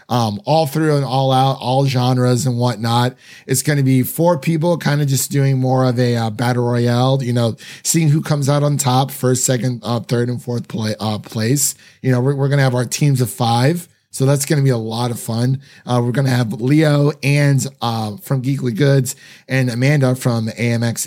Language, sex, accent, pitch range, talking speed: English, male, American, 120-145 Hz, 220 wpm